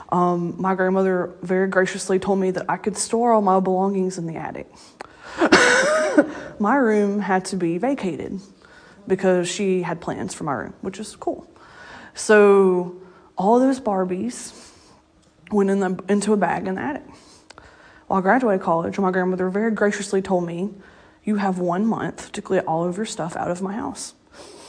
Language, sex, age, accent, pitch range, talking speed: English, female, 20-39, American, 185-240 Hz, 175 wpm